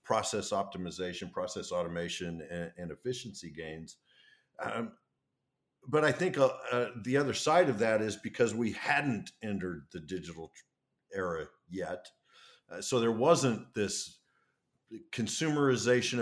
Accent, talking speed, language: American, 120 wpm, English